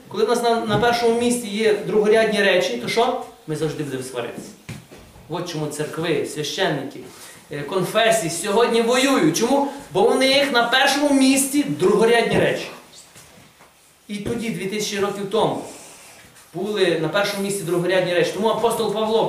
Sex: male